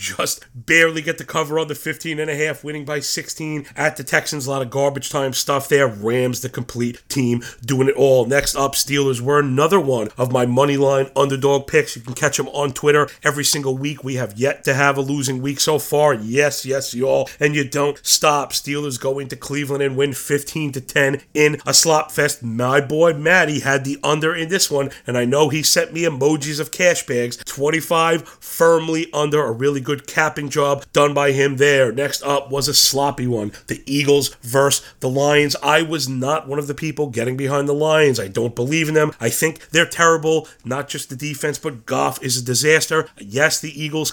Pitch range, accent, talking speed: 135-155 Hz, American, 215 wpm